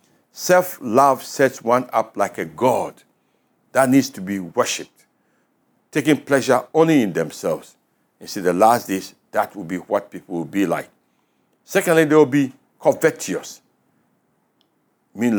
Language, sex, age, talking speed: English, male, 60-79, 140 wpm